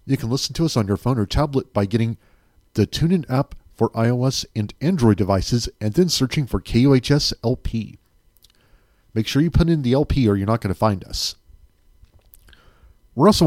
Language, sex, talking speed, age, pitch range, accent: English, male, 185 wpm, 40-59, 100-125 Hz, American